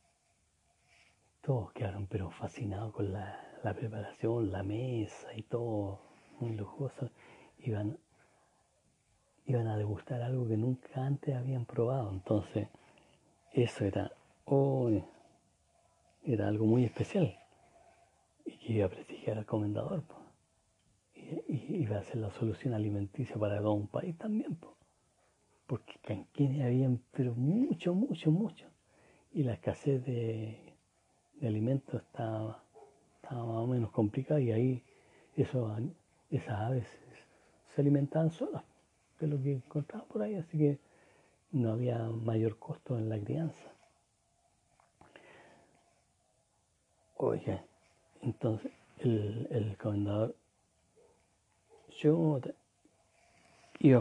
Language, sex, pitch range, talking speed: Spanish, male, 110-140 Hz, 110 wpm